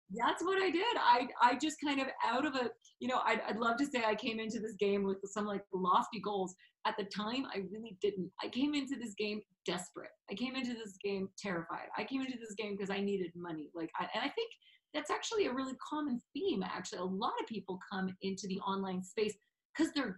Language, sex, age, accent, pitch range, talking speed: English, female, 30-49, American, 200-255 Hz, 230 wpm